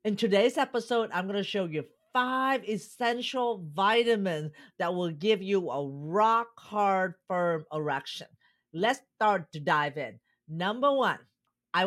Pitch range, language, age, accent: 165-230 Hz, English, 40-59, American